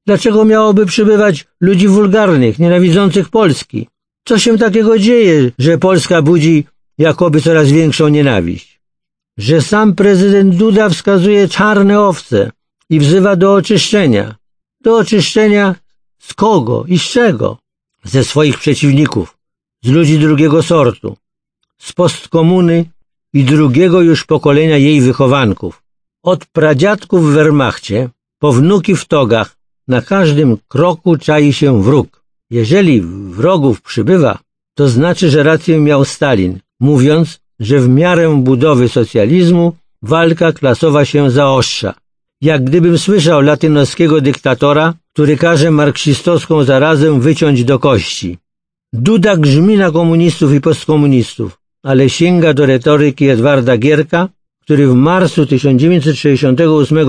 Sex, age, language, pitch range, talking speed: male, 60-79, Polish, 135-175 Hz, 120 wpm